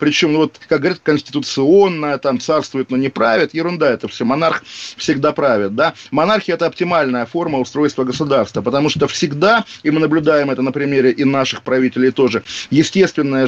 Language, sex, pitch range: Russian, male, 135-170 Hz